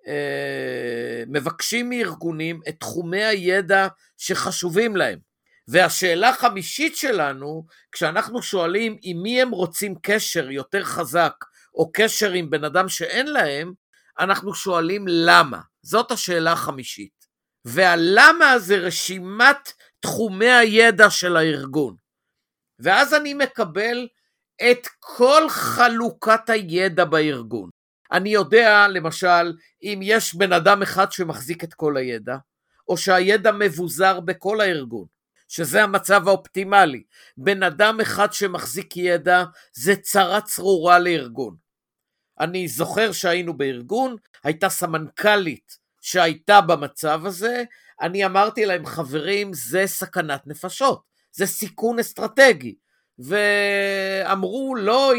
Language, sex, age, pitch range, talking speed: Hebrew, male, 50-69, 165-215 Hz, 105 wpm